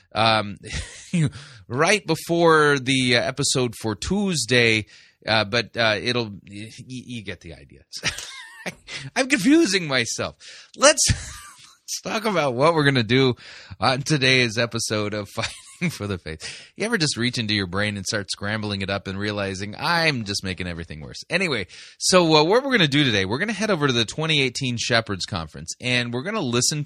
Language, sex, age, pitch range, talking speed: English, male, 30-49, 105-130 Hz, 180 wpm